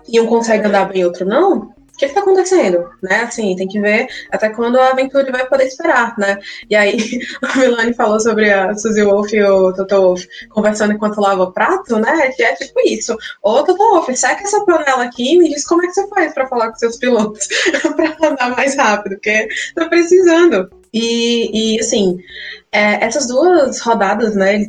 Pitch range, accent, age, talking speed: 195-260 Hz, Brazilian, 20-39, 205 wpm